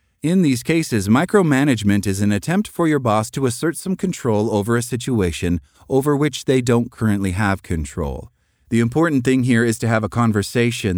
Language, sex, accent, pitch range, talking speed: English, male, American, 100-135 Hz, 180 wpm